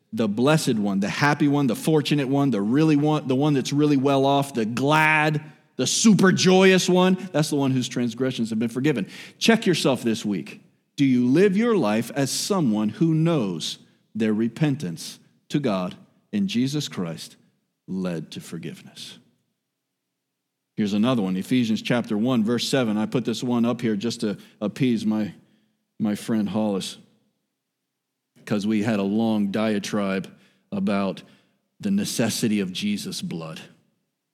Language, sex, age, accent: English, male, 40-59, American